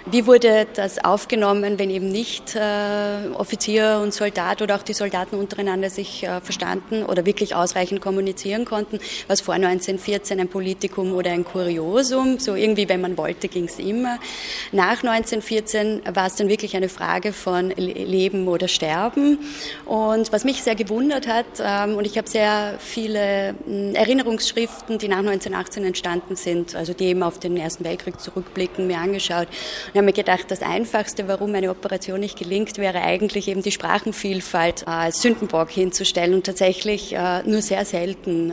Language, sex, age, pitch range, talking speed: German, female, 20-39, 185-210 Hz, 165 wpm